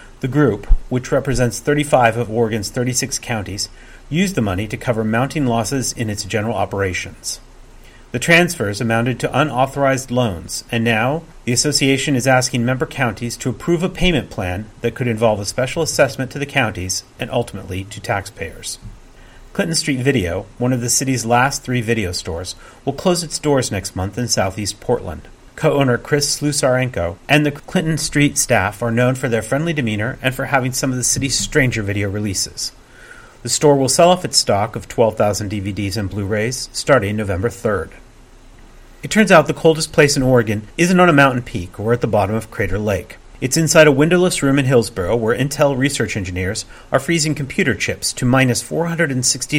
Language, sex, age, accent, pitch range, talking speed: English, male, 40-59, American, 110-140 Hz, 180 wpm